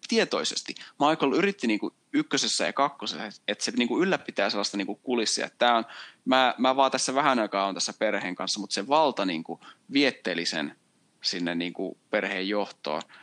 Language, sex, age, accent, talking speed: Finnish, male, 20-39, native, 160 wpm